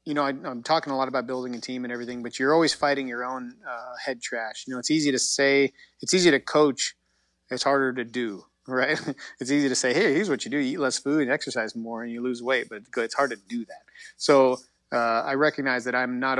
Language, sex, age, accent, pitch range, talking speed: English, male, 30-49, American, 120-140 Hz, 255 wpm